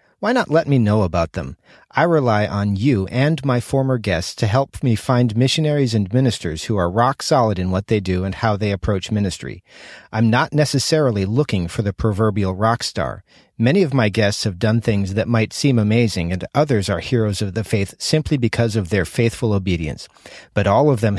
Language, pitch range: English, 100-125 Hz